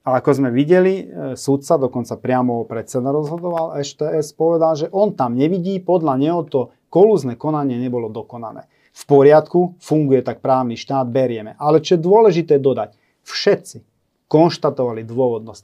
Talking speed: 140 wpm